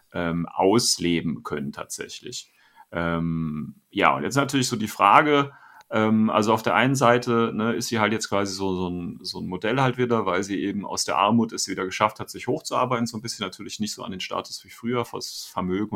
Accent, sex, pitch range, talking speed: German, male, 100-120 Hz, 200 wpm